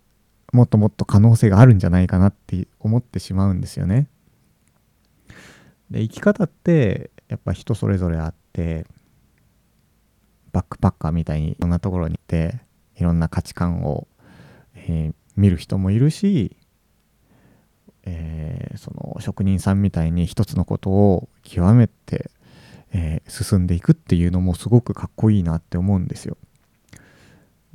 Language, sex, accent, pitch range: Japanese, male, native, 90-120 Hz